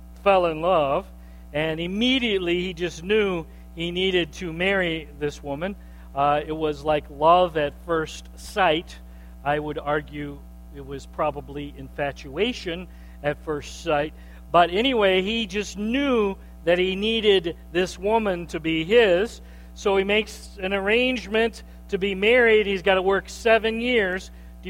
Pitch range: 145-205 Hz